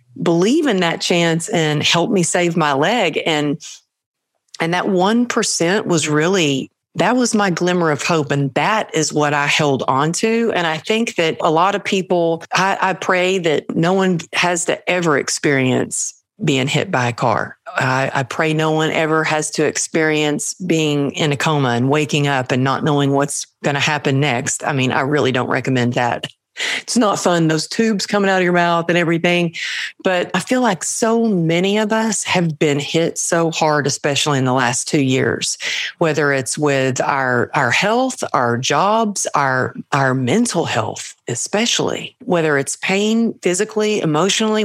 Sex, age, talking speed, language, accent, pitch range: female, 50-69, 180 wpm, English, American, 145-180 Hz